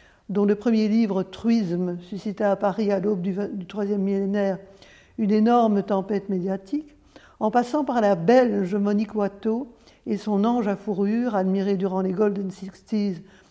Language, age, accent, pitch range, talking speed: French, 60-79, French, 195-235 Hz, 150 wpm